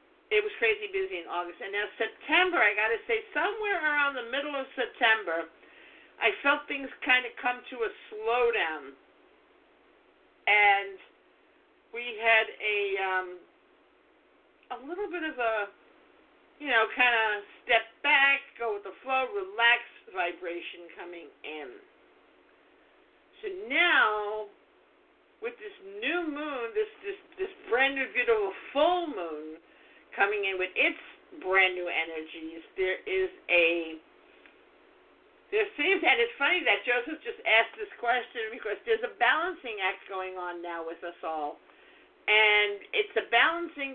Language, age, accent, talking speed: English, 50-69, American, 140 wpm